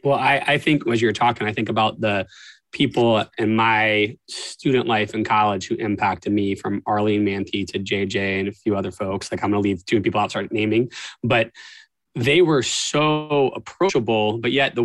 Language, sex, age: English, male, 20-39